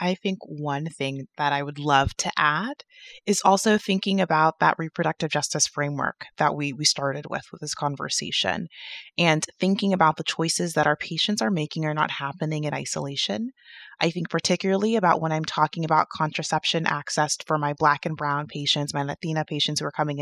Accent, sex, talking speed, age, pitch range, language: American, female, 185 wpm, 20-39, 150-165 Hz, English